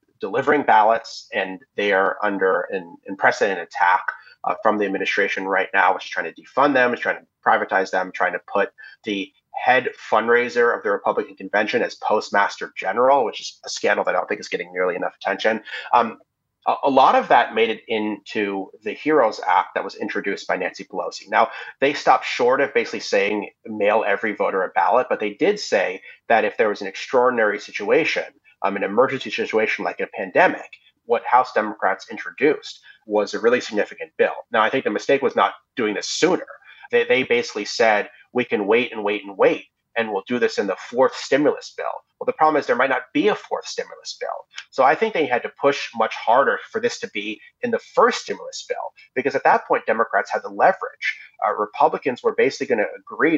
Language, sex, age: English, male, 30-49